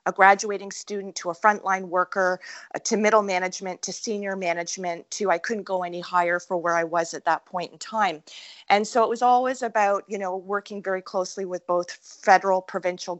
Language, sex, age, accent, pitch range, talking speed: English, female, 30-49, American, 175-205 Hz, 200 wpm